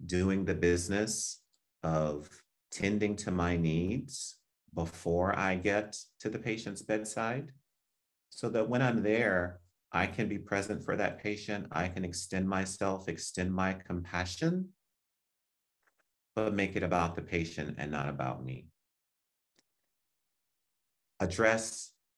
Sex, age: male, 30-49